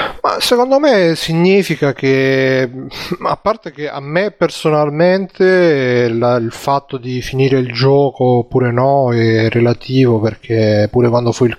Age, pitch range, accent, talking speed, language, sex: 30-49, 115-135 Hz, native, 140 wpm, Italian, male